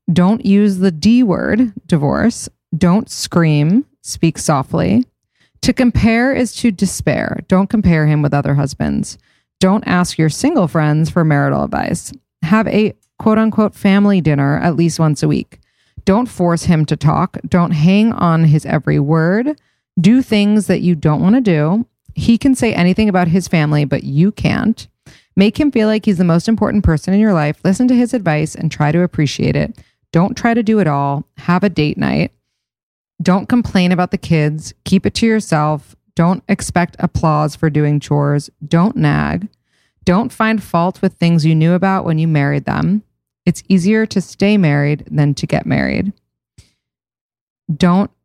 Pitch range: 155-210 Hz